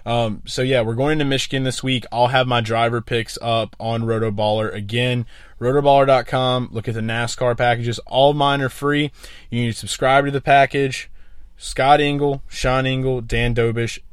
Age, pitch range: 20-39, 110-140 Hz